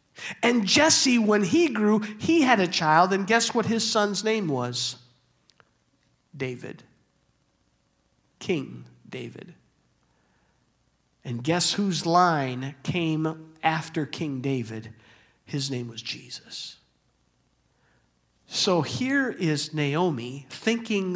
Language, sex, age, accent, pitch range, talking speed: English, male, 50-69, American, 125-165 Hz, 100 wpm